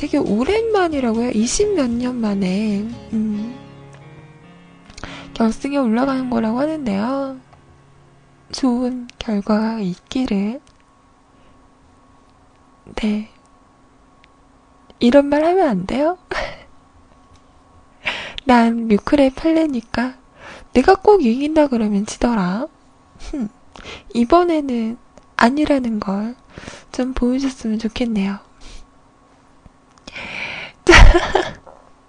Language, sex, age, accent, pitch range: Korean, female, 20-39, native, 220-305 Hz